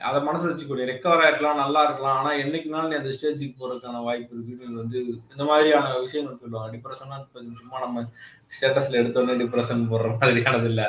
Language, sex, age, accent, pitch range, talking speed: Tamil, male, 20-39, native, 130-200 Hz, 145 wpm